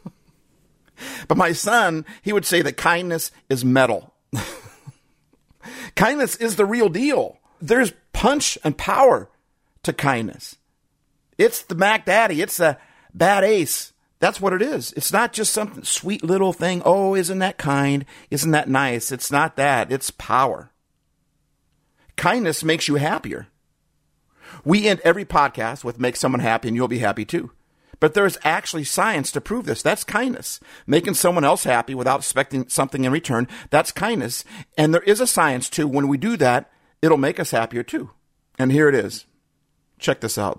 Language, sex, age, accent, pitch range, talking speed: English, male, 50-69, American, 125-185 Hz, 165 wpm